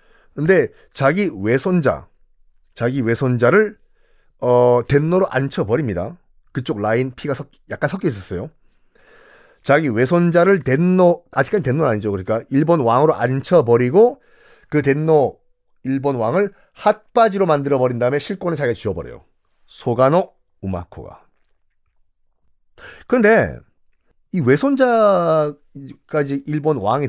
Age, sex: 30-49, male